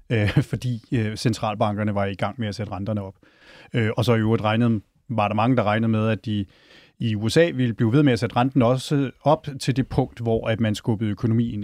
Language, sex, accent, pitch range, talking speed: Danish, male, native, 110-130 Hz, 195 wpm